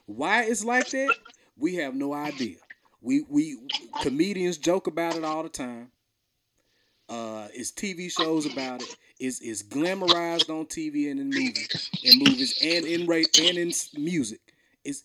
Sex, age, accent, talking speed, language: male, 30-49, American, 155 wpm, English